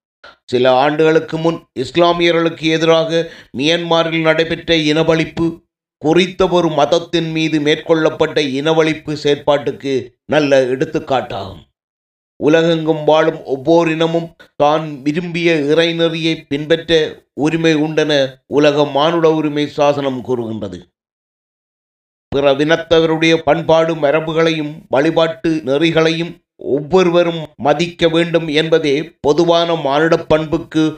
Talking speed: 85 wpm